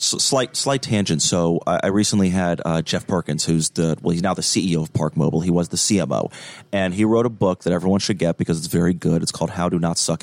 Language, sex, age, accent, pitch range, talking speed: English, male, 30-49, American, 90-110 Hz, 260 wpm